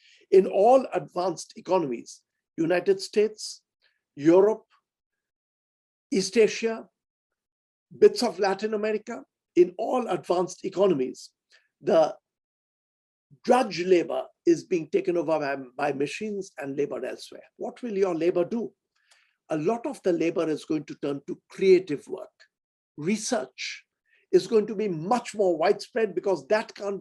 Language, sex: Hungarian, male